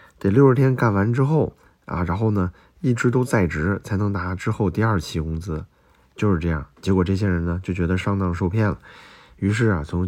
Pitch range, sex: 90-115 Hz, male